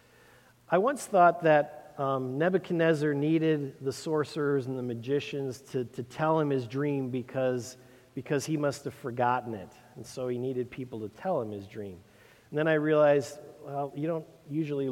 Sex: male